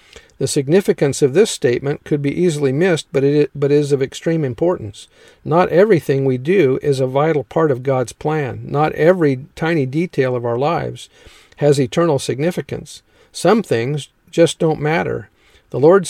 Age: 50-69